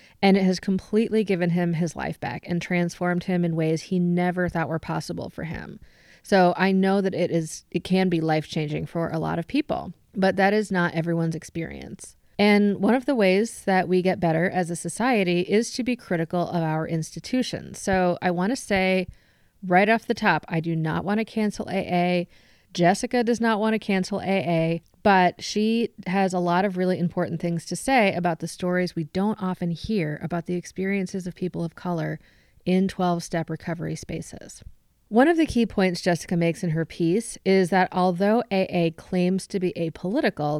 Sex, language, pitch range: female, English, 170-195 Hz